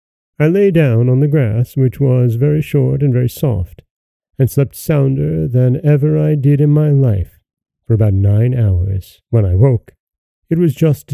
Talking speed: 180 wpm